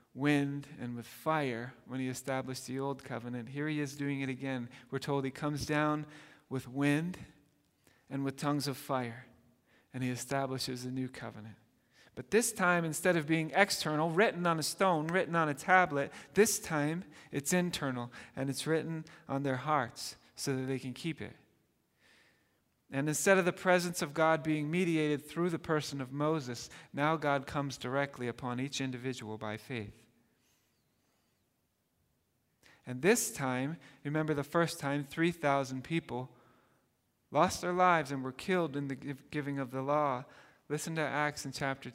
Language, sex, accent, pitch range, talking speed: English, male, American, 125-155 Hz, 165 wpm